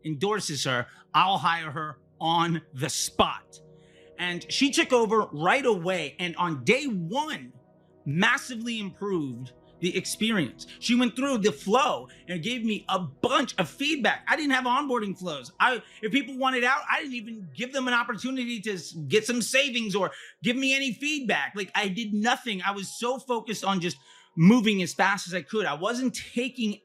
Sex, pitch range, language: male, 180-245 Hz, English